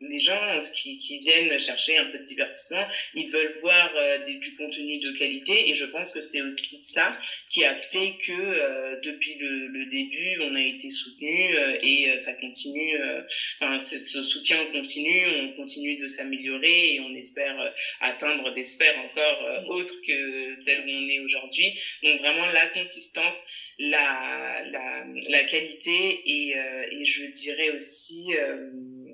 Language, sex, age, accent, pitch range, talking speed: French, female, 20-39, French, 140-180 Hz, 175 wpm